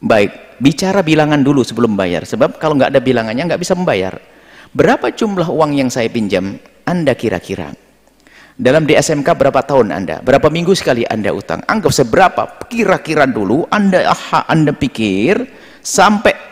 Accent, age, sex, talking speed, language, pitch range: native, 50-69, male, 150 wpm, Indonesian, 130-180 Hz